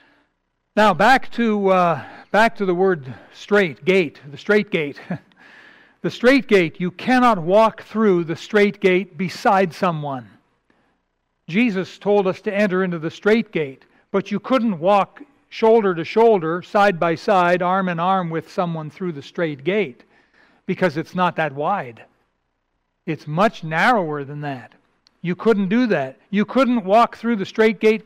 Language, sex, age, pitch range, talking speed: English, male, 60-79, 170-220 Hz, 160 wpm